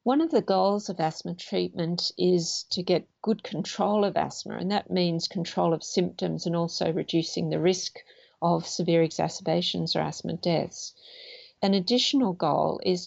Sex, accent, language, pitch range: female, Australian, English, 170-200 Hz